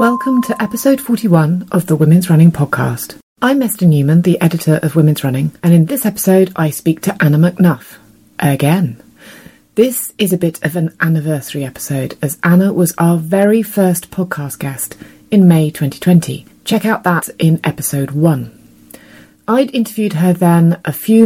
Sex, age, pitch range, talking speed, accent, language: female, 30-49, 155-200 Hz, 165 wpm, British, English